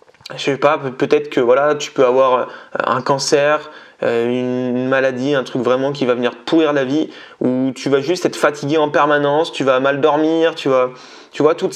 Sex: male